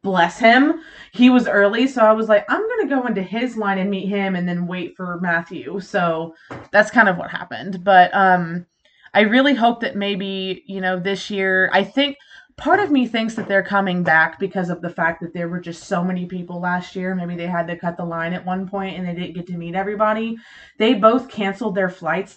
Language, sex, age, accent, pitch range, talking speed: English, female, 20-39, American, 175-215 Hz, 230 wpm